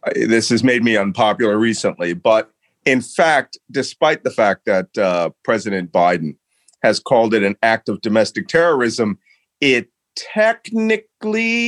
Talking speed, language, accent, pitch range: 135 wpm, English, American, 110-160 Hz